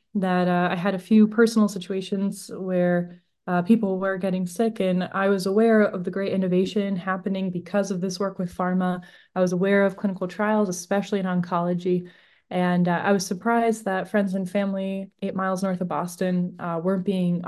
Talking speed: 190 wpm